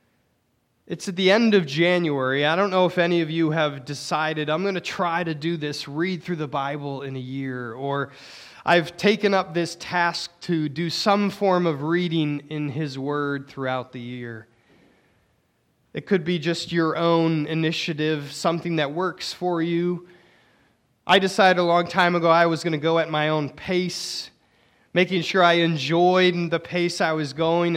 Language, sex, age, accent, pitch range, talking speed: English, male, 20-39, American, 145-175 Hz, 180 wpm